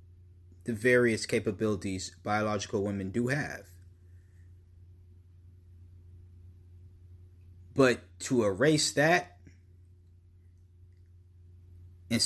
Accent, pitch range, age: American, 90-115 Hz, 30-49